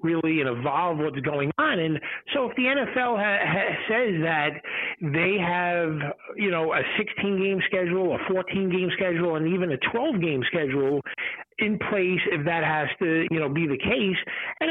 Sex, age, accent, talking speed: male, 50-69, American, 170 wpm